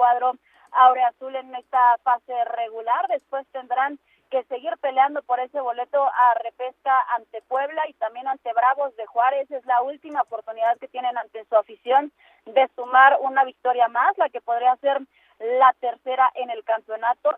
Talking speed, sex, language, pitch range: 165 wpm, female, Spanish, 235-275 Hz